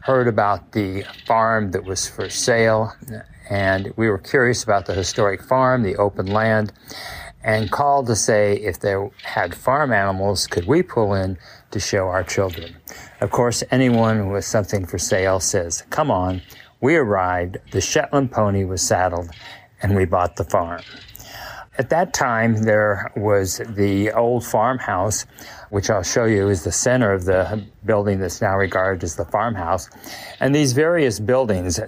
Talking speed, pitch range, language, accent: 160 wpm, 100-120 Hz, English, American